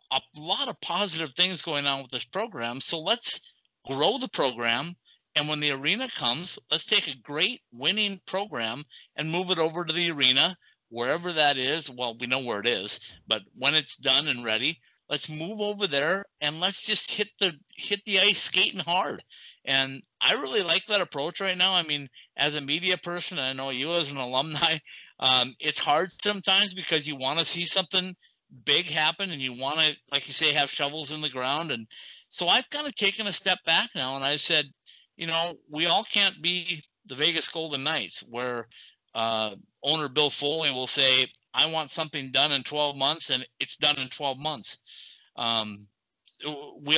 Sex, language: male, English